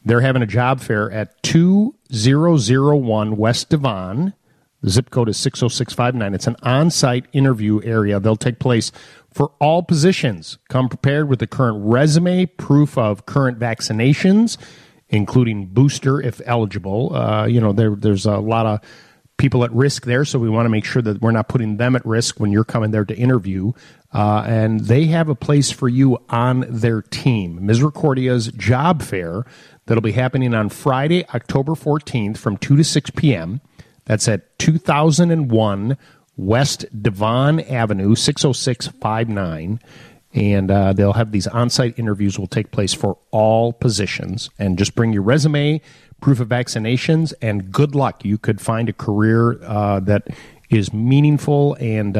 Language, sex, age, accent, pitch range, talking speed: English, male, 40-59, American, 110-145 Hz, 155 wpm